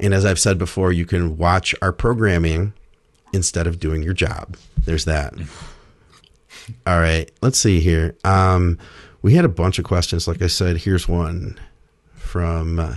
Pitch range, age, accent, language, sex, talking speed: 85-100 Hz, 40-59, American, English, male, 160 wpm